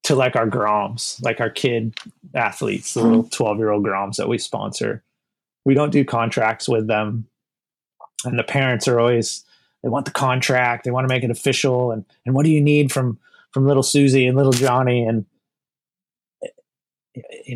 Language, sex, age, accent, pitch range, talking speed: English, male, 30-49, American, 115-140 Hz, 180 wpm